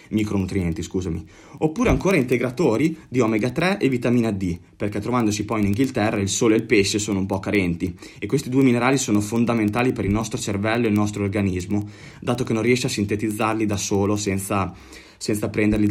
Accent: native